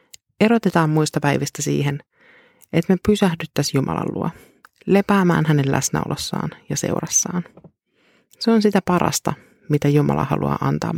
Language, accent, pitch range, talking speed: Finnish, native, 145-190 Hz, 120 wpm